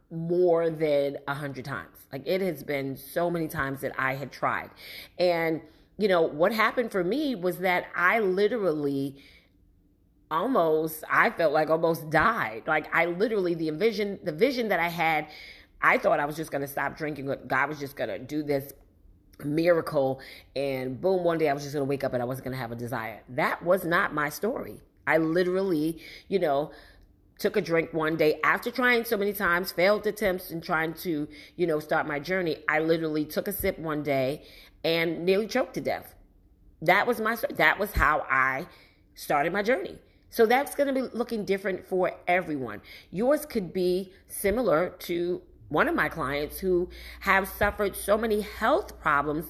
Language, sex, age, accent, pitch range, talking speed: English, female, 30-49, American, 145-200 Hz, 185 wpm